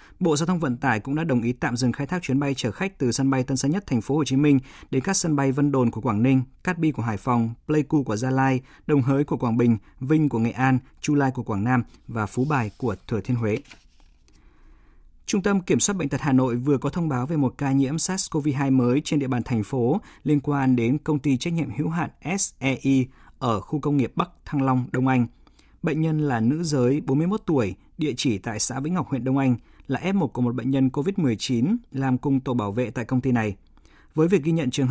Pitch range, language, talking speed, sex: 120-150 Hz, Vietnamese, 255 wpm, male